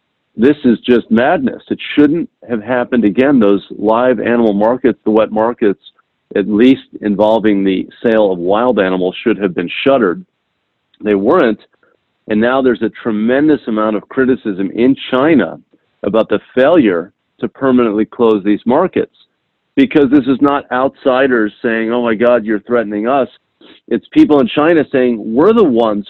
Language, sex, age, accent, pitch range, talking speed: English, male, 40-59, American, 105-125 Hz, 155 wpm